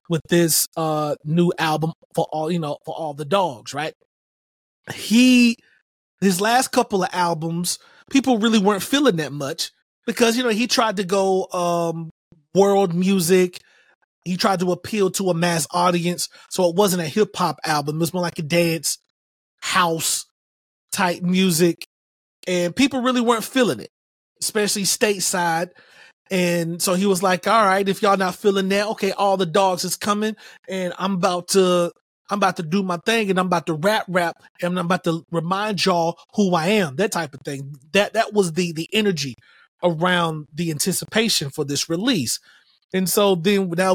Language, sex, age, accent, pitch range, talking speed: English, male, 30-49, American, 170-215 Hz, 180 wpm